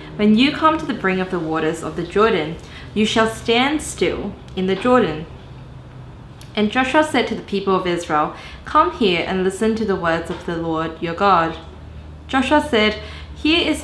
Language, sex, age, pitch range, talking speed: English, female, 20-39, 180-240 Hz, 185 wpm